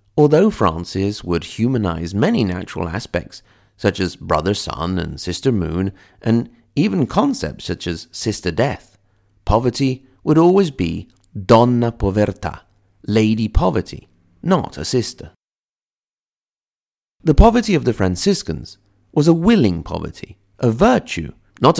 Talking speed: 115 wpm